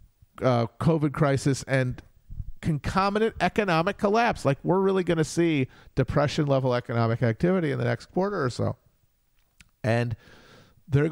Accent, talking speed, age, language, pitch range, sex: American, 135 wpm, 40-59, English, 120-145 Hz, male